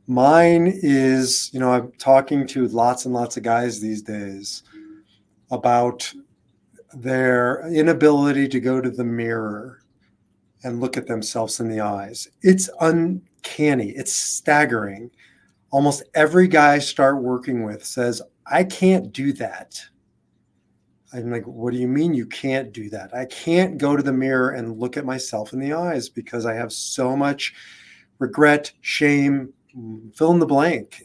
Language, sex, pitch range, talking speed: English, male, 120-150 Hz, 155 wpm